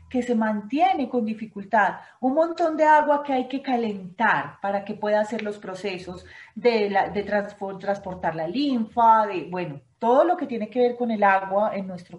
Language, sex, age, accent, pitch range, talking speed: Spanish, female, 30-49, Colombian, 205-245 Hz, 190 wpm